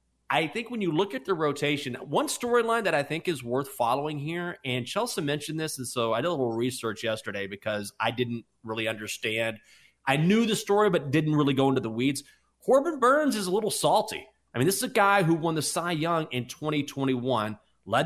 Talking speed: 215 wpm